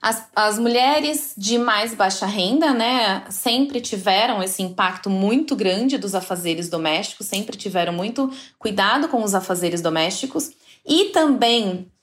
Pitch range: 200-280 Hz